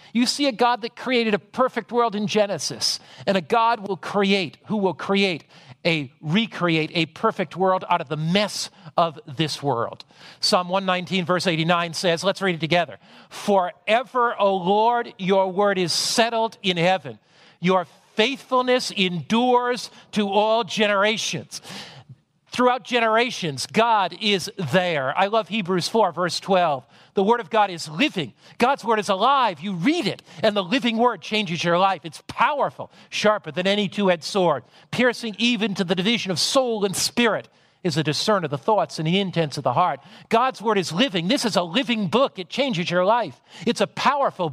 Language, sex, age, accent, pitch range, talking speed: English, male, 50-69, American, 175-230 Hz, 175 wpm